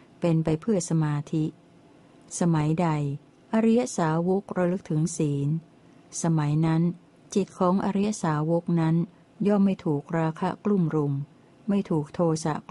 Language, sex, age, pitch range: Thai, female, 60-79, 155-185 Hz